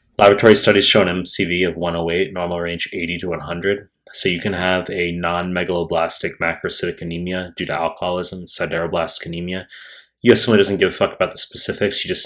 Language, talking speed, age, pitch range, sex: English, 170 wpm, 30-49, 90-100 Hz, male